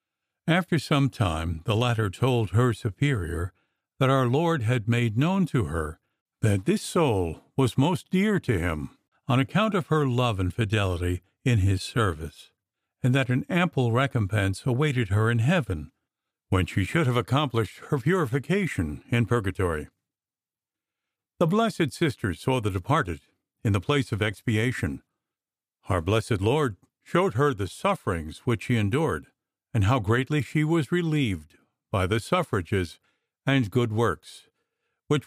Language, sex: English, male